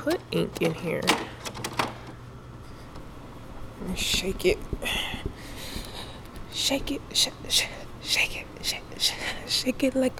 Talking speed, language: 90 wpm, English